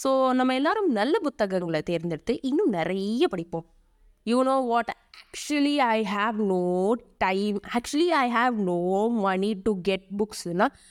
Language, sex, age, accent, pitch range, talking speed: Tamil, female, 20-39, native, 195-280 Hz, 140 wpm